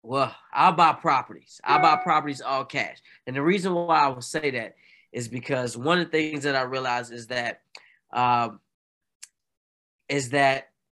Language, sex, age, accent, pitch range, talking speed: English, male, 20-39, American, 130-160 Hz, 170 wpm